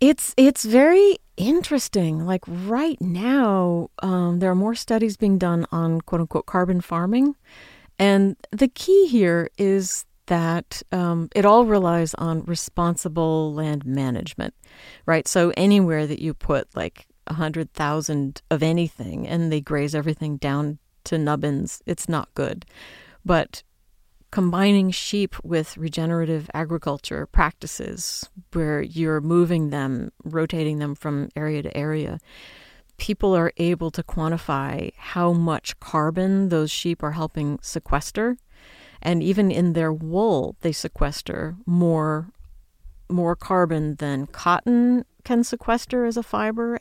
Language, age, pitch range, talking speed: English, 40-59, 155-195 Hz, 125 wpm